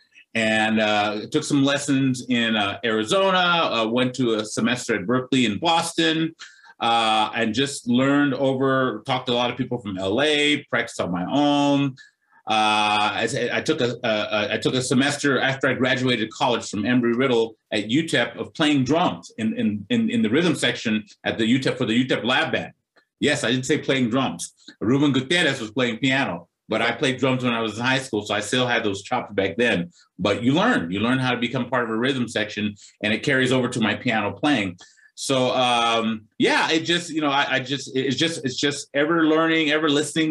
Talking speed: 200 wpm